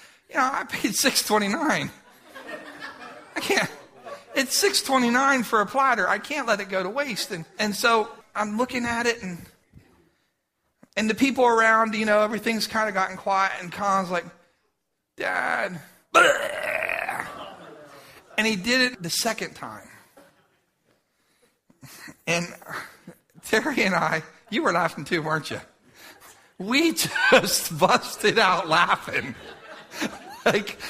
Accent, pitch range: American, 185-245 Hz